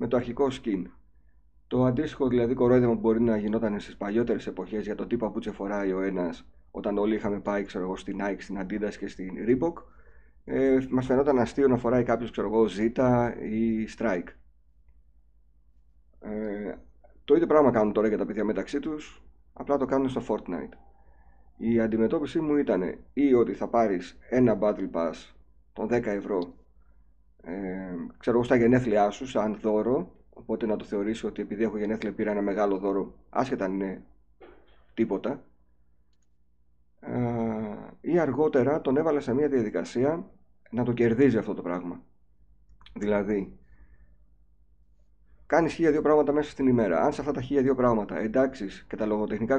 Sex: male